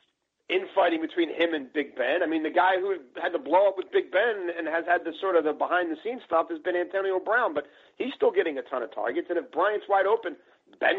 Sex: male